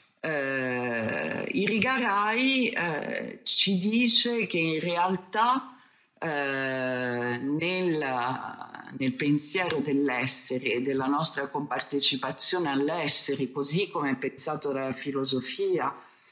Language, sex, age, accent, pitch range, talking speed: Italian, female, 50-69, native, 135-195 Hz, 90 wpm